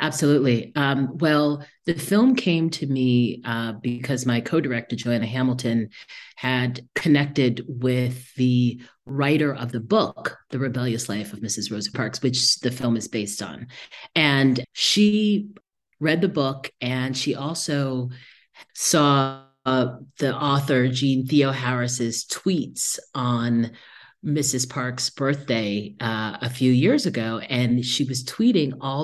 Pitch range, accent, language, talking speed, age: 115-140 Hz, American, English, 135 wpm, 40-59